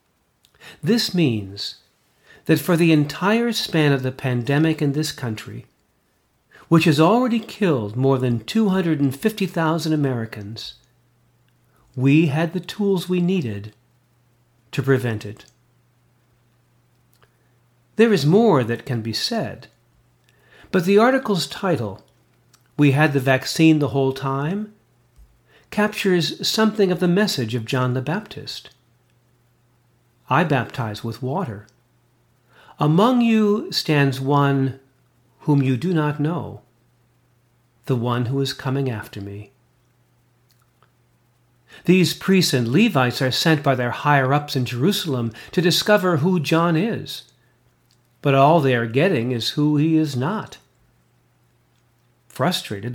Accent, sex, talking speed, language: American, male, 120 wpm, English